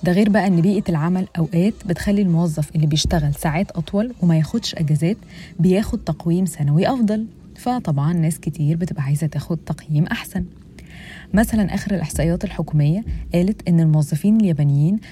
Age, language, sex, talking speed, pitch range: 20-39, Arabic, female, 145 wpm, 160-200 Hz